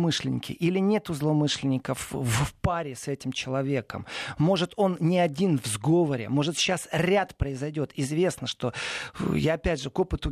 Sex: male